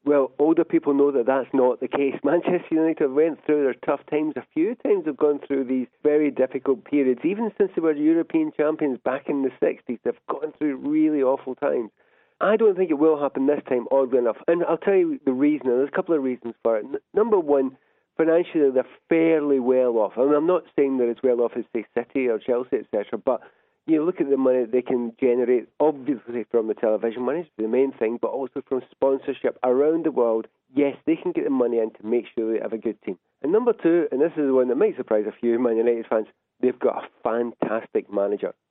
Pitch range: 120-160 Hz